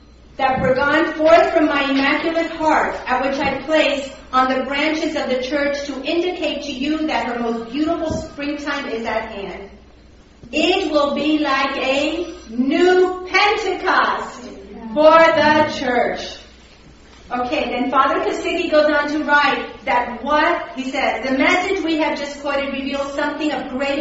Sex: female